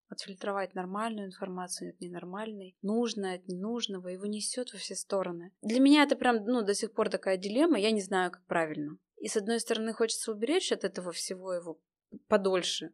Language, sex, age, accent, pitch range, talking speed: Russian, female, 20-39, native, 185-230 Hz, 180 wpm